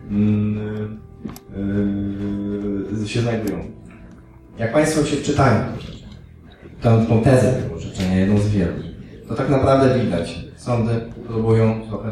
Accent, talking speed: native, 115 wpm